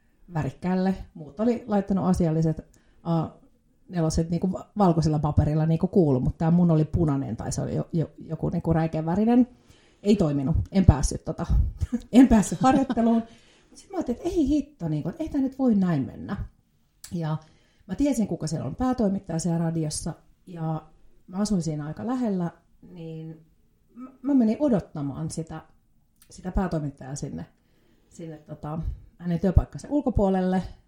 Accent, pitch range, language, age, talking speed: native, 160-225 Hz, Finnish, 30-49, 140 wpm